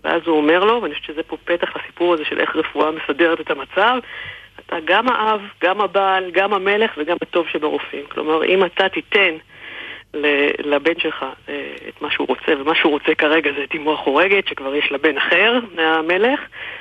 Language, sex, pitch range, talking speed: Hebrew, female, 150-175 Hz, 180 wpm